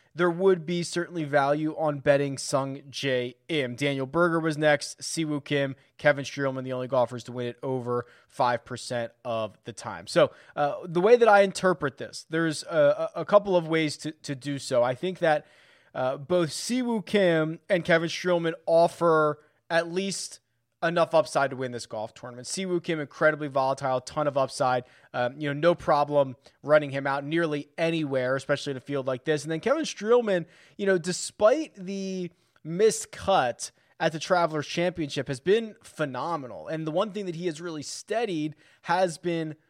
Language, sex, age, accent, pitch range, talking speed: English, male, 20-39, American, 140-180 Hz, 180 wpm